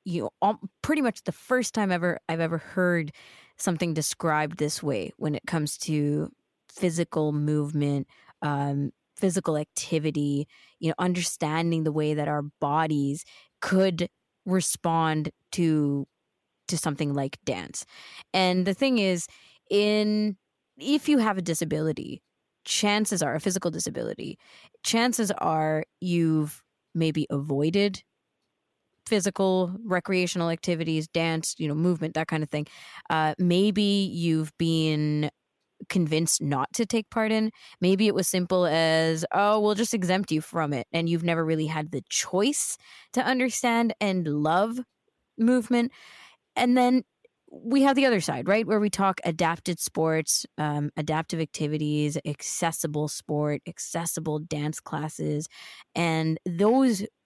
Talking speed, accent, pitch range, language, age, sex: 135 wpm, American, 155-200 Hz, English, 20-39, female